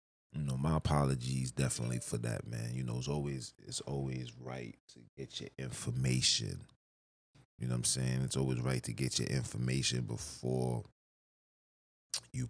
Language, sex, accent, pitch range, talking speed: English, male, American, 65-75 Hz, 160 wpm